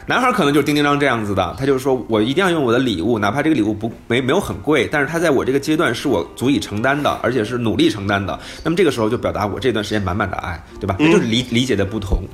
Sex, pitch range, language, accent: male, 115-165 Hz, Chinese, native